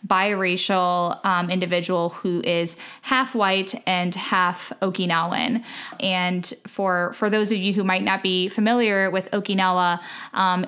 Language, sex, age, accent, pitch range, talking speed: English, female, 10-29, American, 180-210 Hz, 135 wpm